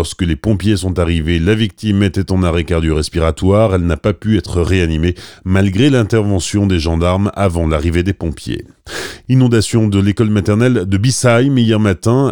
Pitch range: 90-115 Hz